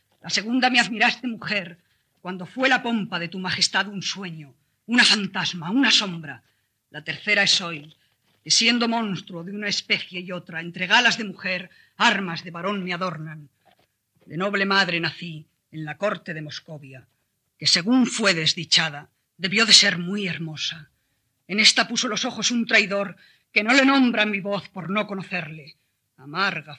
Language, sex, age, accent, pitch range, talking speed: Spanish, female, 40-59, Spanish, 160-210 Hz, 165 wpm